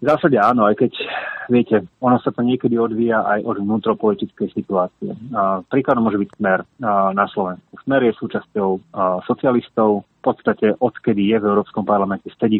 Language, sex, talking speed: Slovak, male, 155 wpm